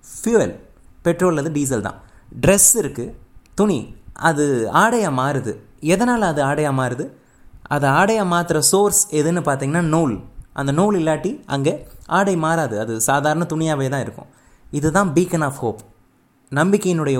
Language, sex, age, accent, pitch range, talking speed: Tamil, male, 20-39, native, 125-170 Hz, 135 wpm